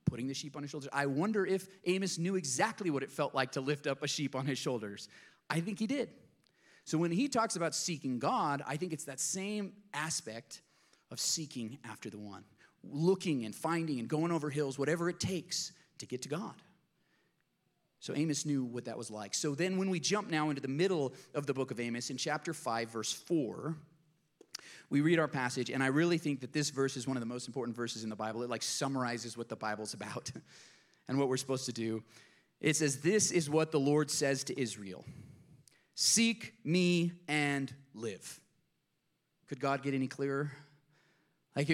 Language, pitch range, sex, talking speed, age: English, 130-170 Hz, male, 200 wpm, 30-49